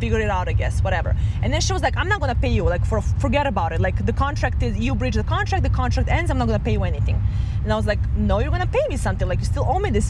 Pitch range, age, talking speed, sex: 100-110 Hz, 20-39, 320 wpm, female